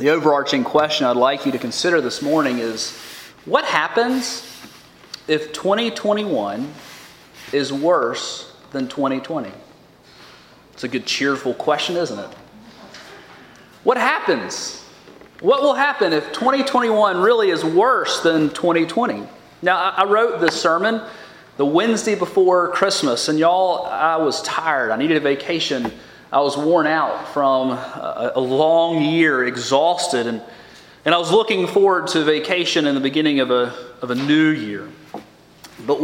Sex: male